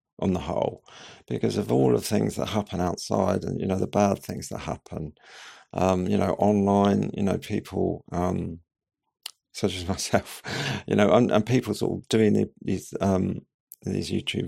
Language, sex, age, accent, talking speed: English, male, 50-69, British, 175 wpm